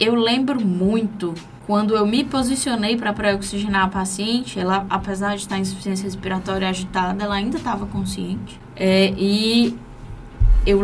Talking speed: 145 wpm